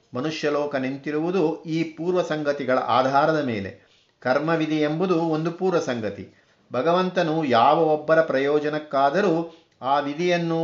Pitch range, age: 135-165 Hz, 50-69